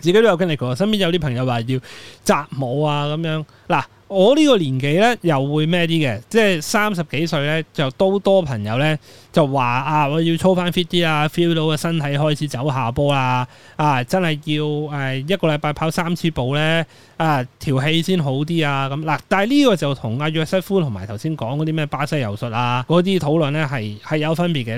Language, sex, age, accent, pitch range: Chinese, male, 20-39, native, 130-170 Hz